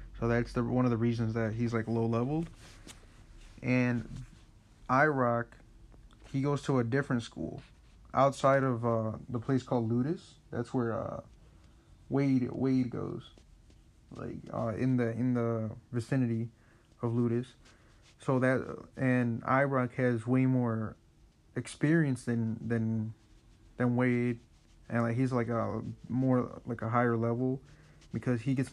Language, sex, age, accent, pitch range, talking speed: English, male, 30-49, American, 115-130 Hz, 140 wpm